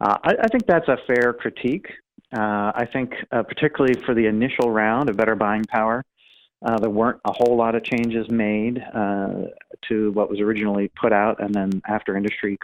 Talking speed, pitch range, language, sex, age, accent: 195 wpm, 100-115 Hz, English, male, 40-59, American